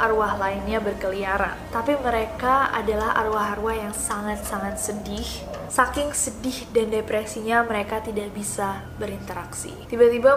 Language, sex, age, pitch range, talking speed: Indonesian, female, 20-39, 210-260 Hz, 110 wpm